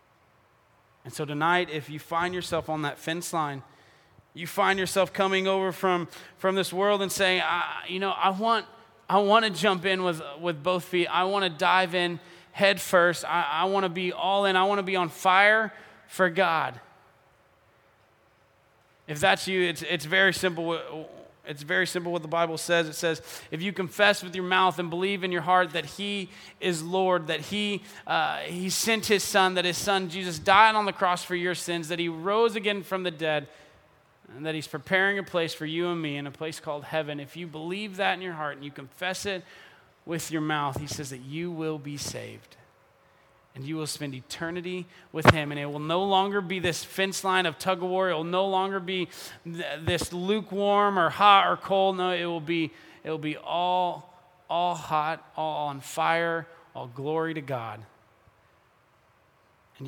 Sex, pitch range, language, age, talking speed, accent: male, 155-190 Hz, English, 20-39, 200 wpm, American